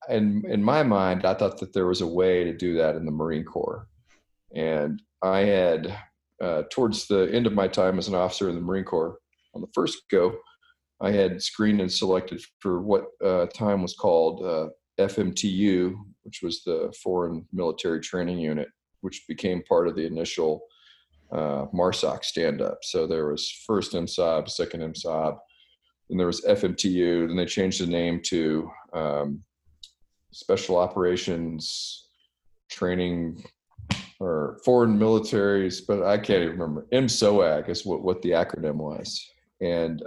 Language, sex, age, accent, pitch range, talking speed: English, male, 40-59, American, 85-110 Hz, 155 wpm